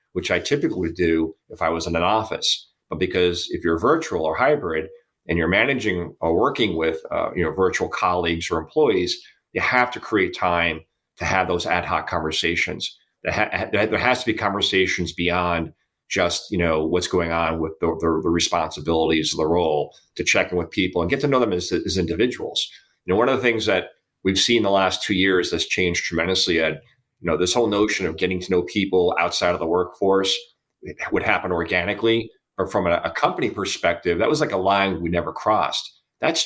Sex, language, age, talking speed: male, English, 40-59, 200 wpm